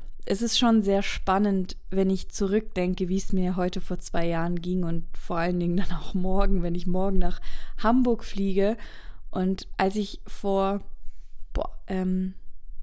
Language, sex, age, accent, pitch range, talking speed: German, female, 20-39, German, 180-215 Hz, 160 wpm